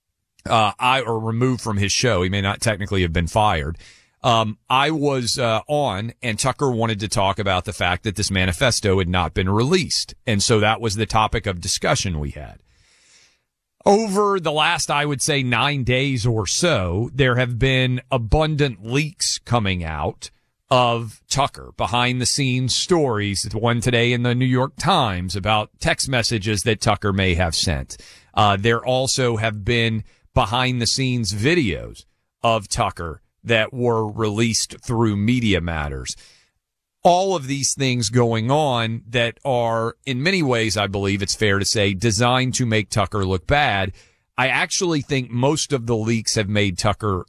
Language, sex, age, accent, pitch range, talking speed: English, male, 40-59, American, 100-130 Hz, 165 wpm